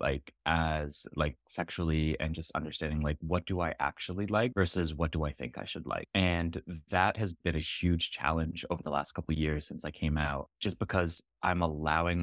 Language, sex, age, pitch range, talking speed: English, male, 20-39, 80-90 Hz, 200 wpm